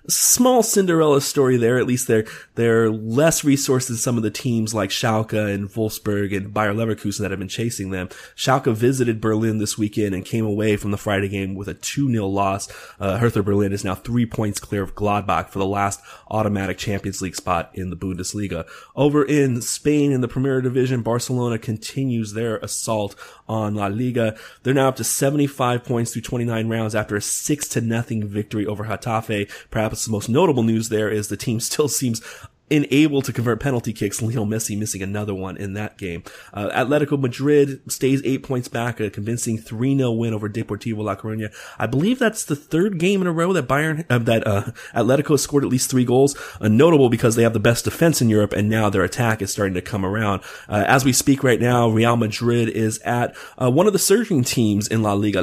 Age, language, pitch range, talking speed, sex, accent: 20-39, English, 105-130 Hz, 205 wpm, male, American